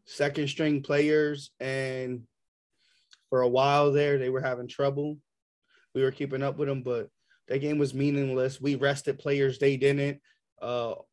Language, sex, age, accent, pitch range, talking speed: English, male, 20-39, American, 135-155 Hz, 155 wpm